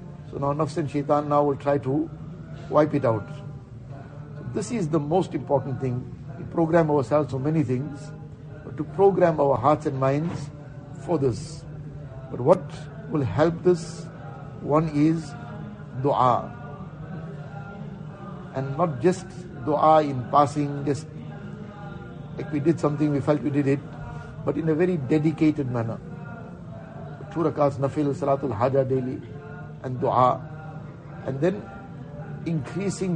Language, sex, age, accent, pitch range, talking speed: English, male, 60-79, Indian, 140-160 Hz, 130 wpm